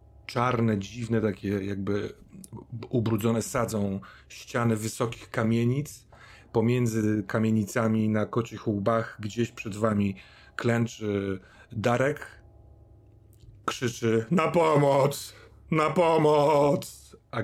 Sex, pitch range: male, 105-120 Hz